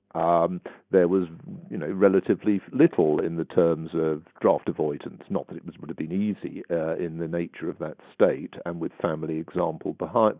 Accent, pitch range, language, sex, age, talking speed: British, 90-120 Hz, English, male, 50-69, 190 wpm